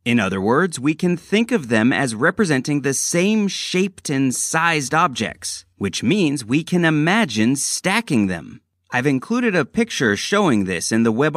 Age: 30-49